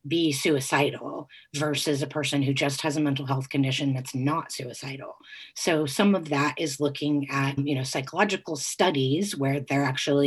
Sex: female